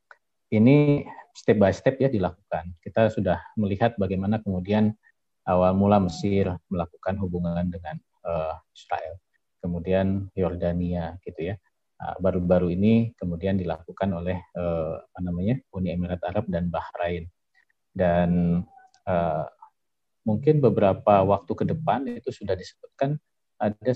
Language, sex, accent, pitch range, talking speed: Indonesian, male, native, 90-105 Hz, 110 wpm